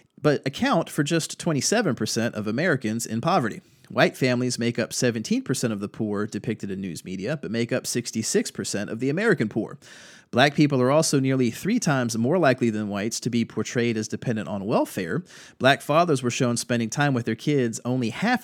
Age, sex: 30-49, male